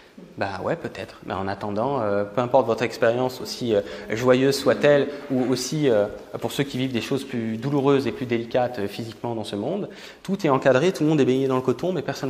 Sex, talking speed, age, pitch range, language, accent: male, 240 wpm, 20-39, 115-140 Hz, French, French